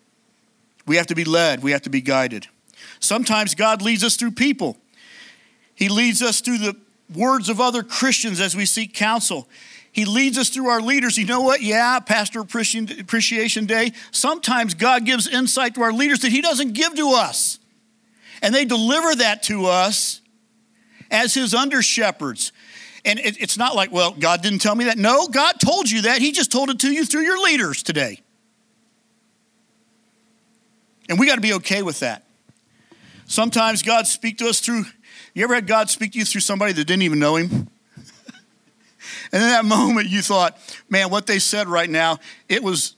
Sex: male